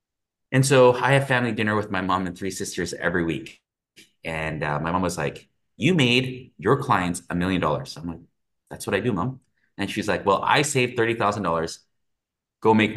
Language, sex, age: English, male, 30-49